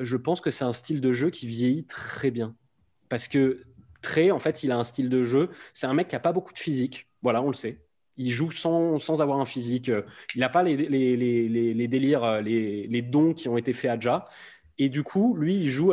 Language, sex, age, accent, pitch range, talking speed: French, male, 20-39, French, 120-145 Hz, 250 wpm